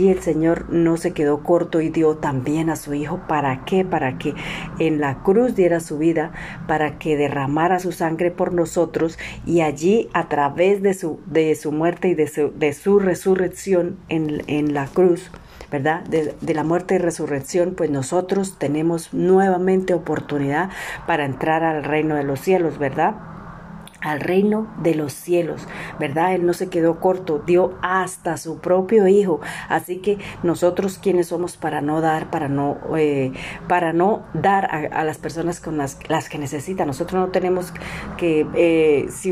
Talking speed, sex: 175 wpm, female